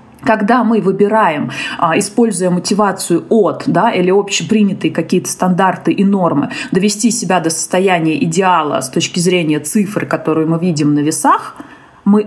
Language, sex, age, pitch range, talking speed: Russian, female, 30-49, 160-210 Hz, 135 wpm